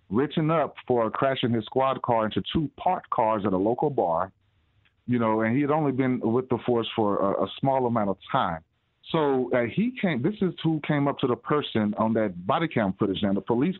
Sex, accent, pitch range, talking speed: male, American, 115-145 Hz, 225 wpm